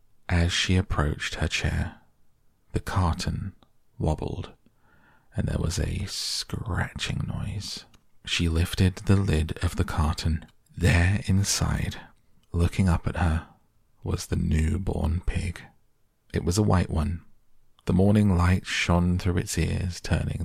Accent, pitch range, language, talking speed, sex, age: British, 85-105 Hz, English, 130 wpm, male, 40-59